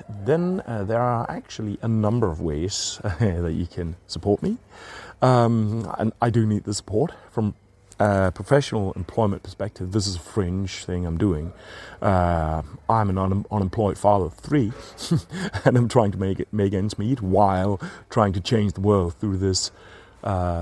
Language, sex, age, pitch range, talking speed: English, male, 30-49, 95-130 Hz, 175 wpm